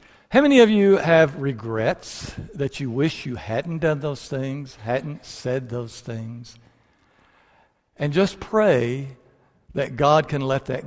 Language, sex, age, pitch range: English, male, 60-79, 120-170 Hz